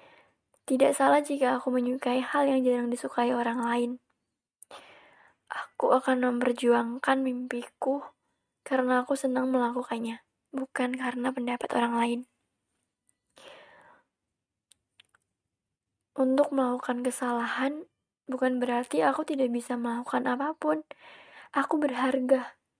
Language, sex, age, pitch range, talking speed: Indonesian, female, 20-39, 240-275 Hz, 95 wpm